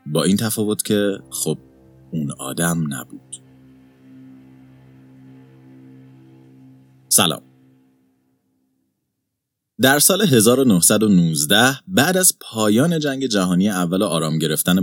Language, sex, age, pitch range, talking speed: Persian, male, 30-49, 75-110 Hz, 85 wpm